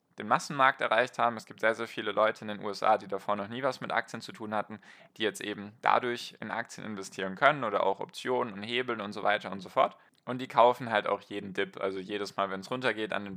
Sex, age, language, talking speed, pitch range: male, 10-29, German, 255 wpm, 100-120 Hz